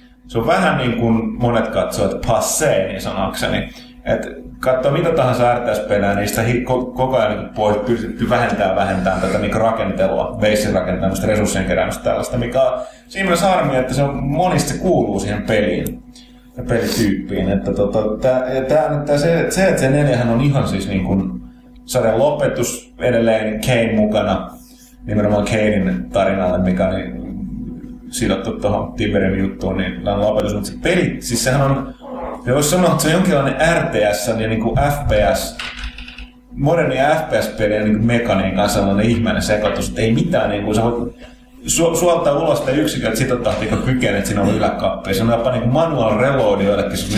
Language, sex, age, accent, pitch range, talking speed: Finnish, male, 30-49, native, 105-140 Hz, 160 wpm